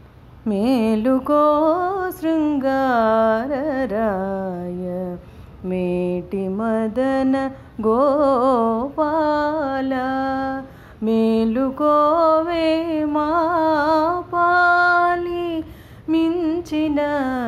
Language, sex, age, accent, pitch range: Telugu, female, 30-49, native, 220-310 Hz